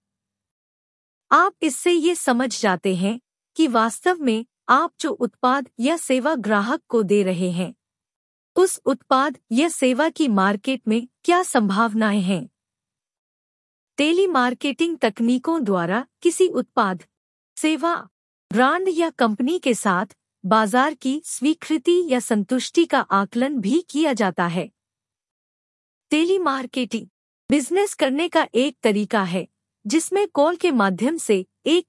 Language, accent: English, Indian